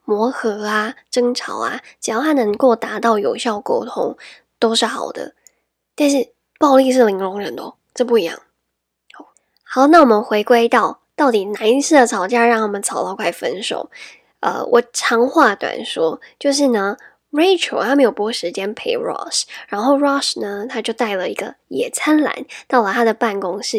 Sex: female